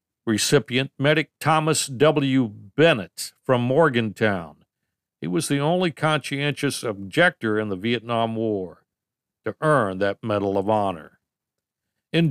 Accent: American